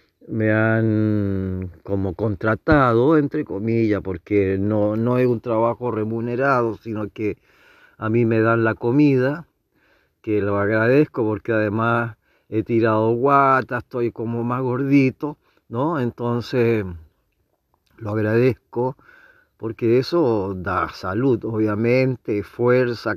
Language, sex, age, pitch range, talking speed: Spanish, male, 40-59, 105-125 Hz, 110 wpm